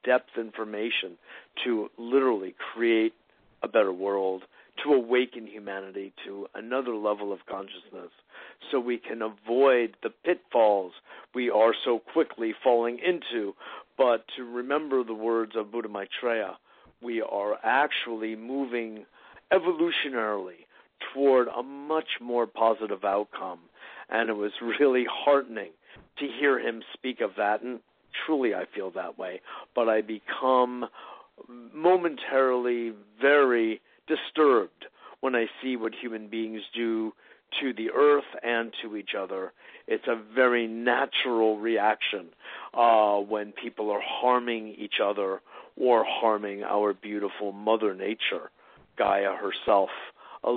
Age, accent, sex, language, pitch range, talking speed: 50-69, American, male, English, 105-125 Hz, 125 wpm